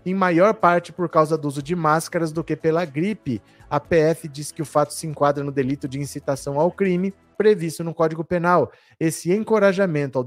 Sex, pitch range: male, 140-180 Hz